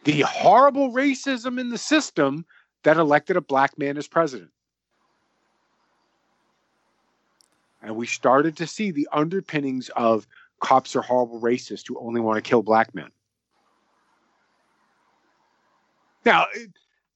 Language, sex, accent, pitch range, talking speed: English, male, American, 125-185 Hz, 115 wpm